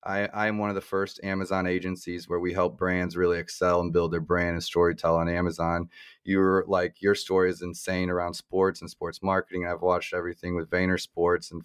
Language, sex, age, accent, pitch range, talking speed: English, male, 20-39, American, 90-100 Hz, 205 wpm